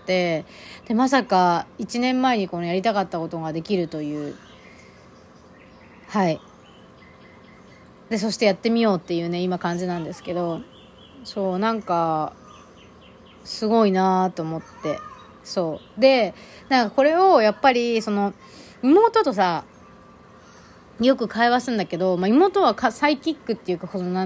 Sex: female